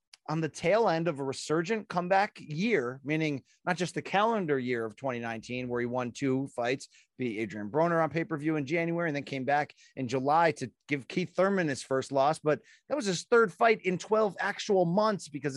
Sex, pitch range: male, 145-210 Hz